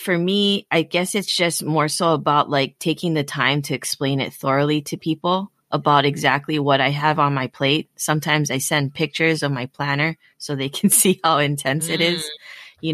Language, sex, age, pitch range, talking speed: English, female, 20-39, 140-160 Hz, 200 wpm